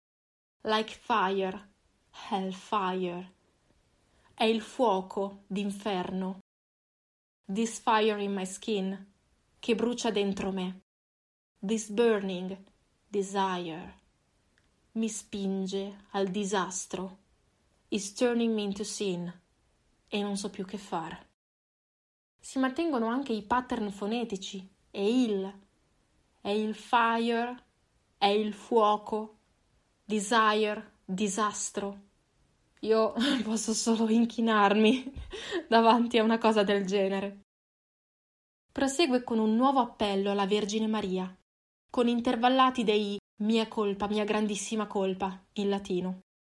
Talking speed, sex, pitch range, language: 100 wpm, female, 195-230 Hz, Italian